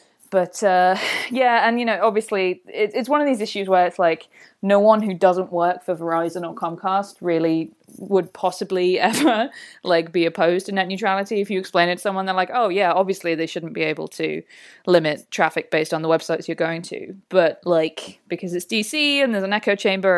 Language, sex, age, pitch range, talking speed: English, female, 20-39, 165-200 Hz, 205 wpm